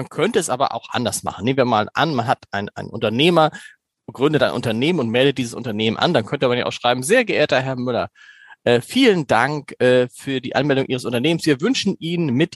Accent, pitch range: German, 130-170 Hz